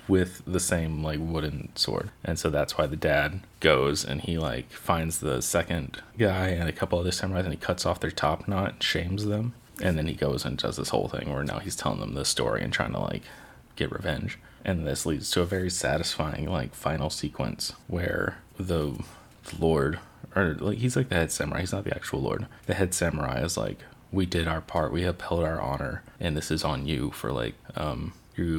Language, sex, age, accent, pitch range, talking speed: English, male, 30-49, American, 80-95 Hz, 220 wpm